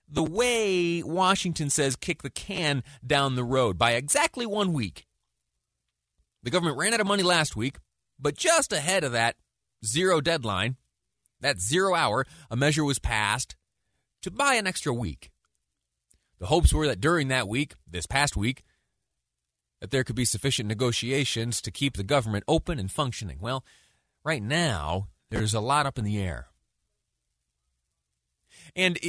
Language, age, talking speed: English, 30-49, 155 wpm